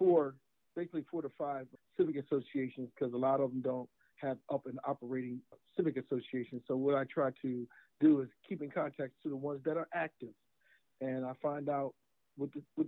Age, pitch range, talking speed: 50-69, 130-155 Hz, 180 wpm